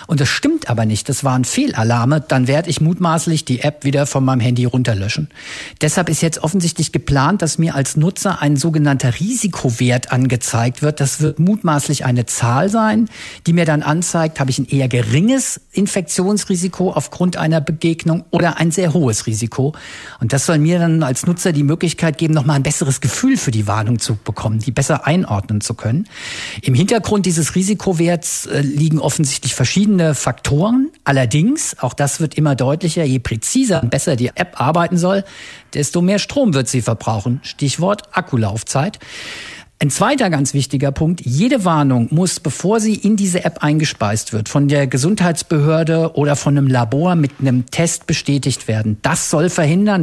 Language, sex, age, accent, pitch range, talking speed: German, male, 50-69, German, 130-175 Hz, 170 wpm